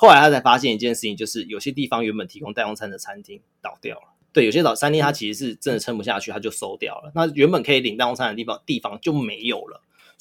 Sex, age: male, 20-39